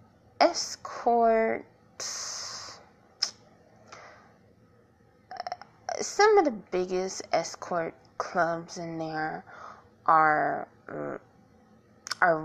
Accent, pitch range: American, 160-185 Hz